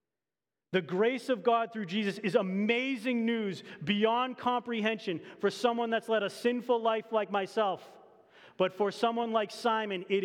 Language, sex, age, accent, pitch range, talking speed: English, male, 30-49, American, 180-235 Hz, 150 wpm